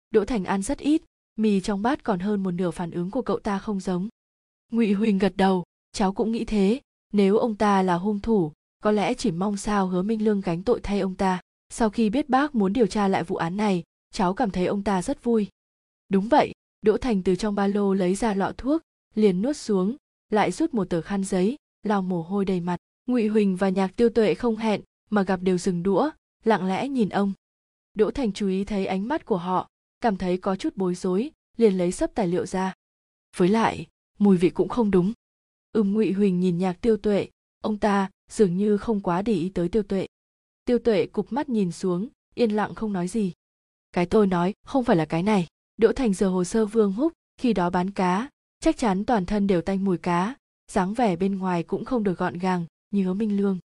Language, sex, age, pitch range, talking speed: Vietnamese, female, 20-39, 185-225 Hz, 230 wpm